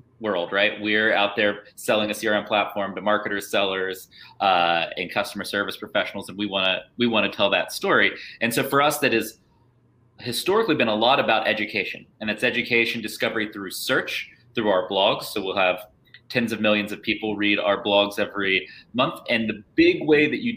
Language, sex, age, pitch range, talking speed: English, male, 30-49, 105-130 Hz, 195 wpm